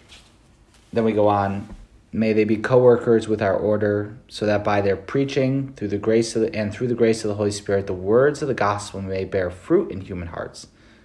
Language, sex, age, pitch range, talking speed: English, male, 30-49, 100-115 Hz, 215 wpm